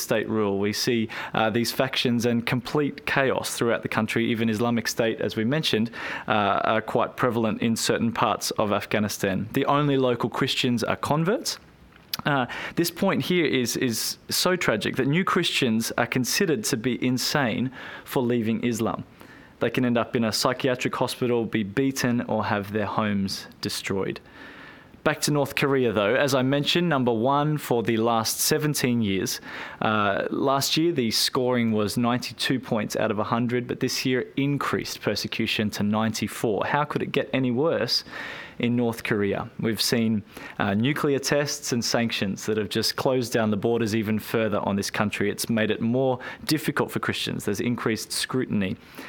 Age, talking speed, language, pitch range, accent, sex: 20-39, 170 wpm, English, 110-130 Hz, Australian, male